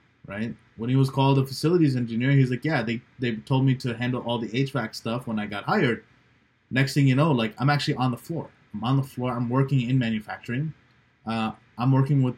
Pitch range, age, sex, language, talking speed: 120-145 Hz, 20-39, male, English, 230 wpm